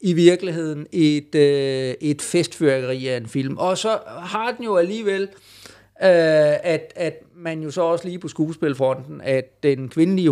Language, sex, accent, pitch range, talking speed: Danish, male, native, 125-155 Hz, 165 wpm